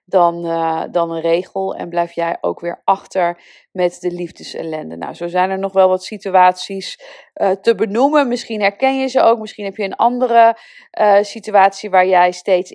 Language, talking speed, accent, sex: Dutch, 185 wpm, Dutch, female